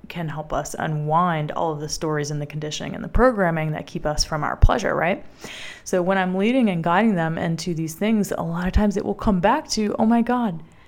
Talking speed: 235 wpm